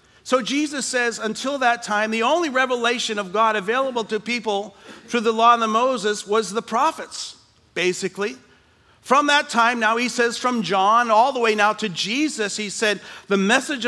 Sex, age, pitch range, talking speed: male, 40-59, 205-250 Hz, 180 wpm